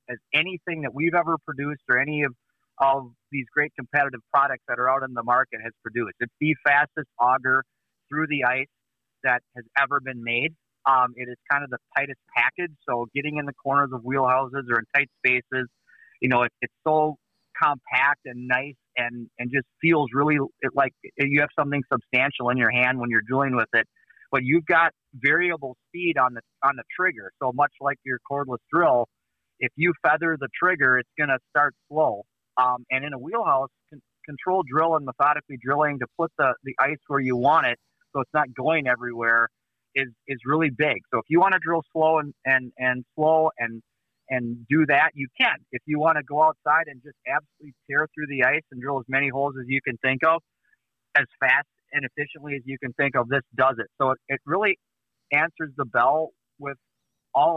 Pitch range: 125-150 Hz